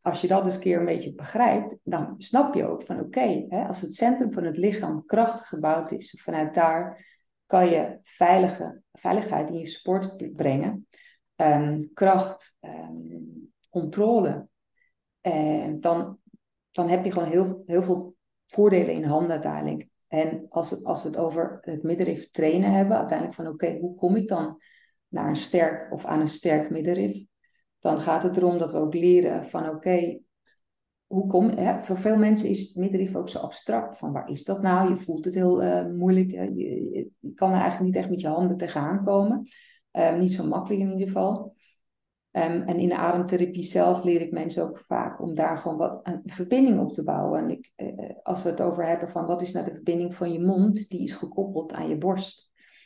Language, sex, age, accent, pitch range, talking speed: Dutch, female, 40-59, Dutch, 160-190 Hz, 200 wpm